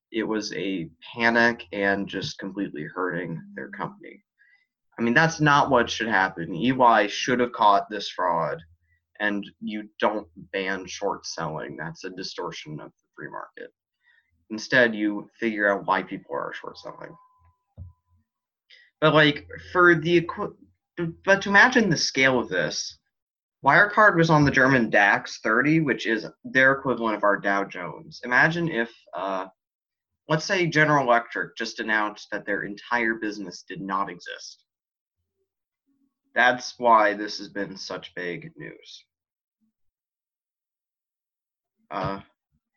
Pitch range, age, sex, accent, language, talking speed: 100-145 Hz, 20-39, male, American, English, 135 wpm